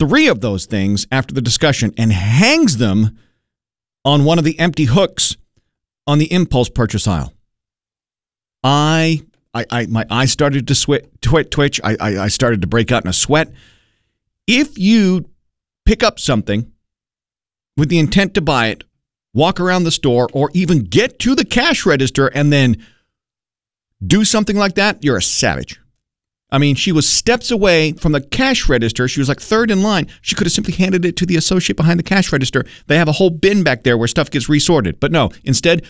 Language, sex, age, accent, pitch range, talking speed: English, male, 50-69, American, 115-175 Hz, 190 wpm